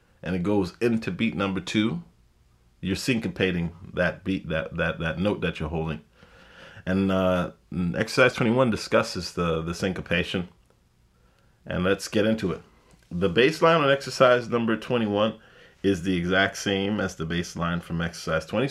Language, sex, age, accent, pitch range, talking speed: English, male, 30-49, American, 85-110 Hz, 150 wpm